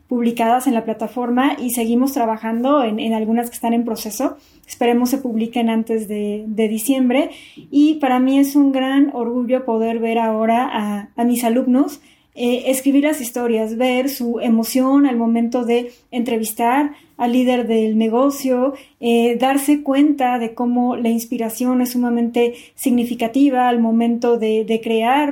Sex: female